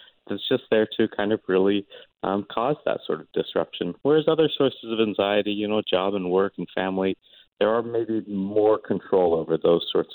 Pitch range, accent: 95-135 Hz, American